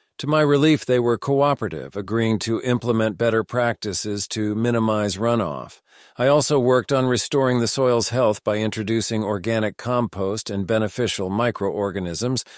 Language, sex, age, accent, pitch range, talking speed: English, male, 40-59, American, 110-125 Hz, 140 wpm